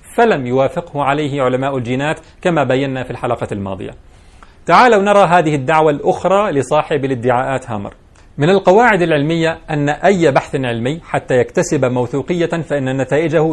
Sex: male